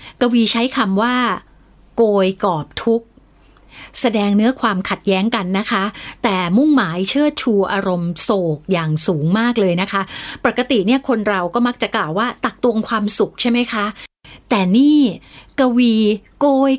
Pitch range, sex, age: 180-245 Hz, female, 30-49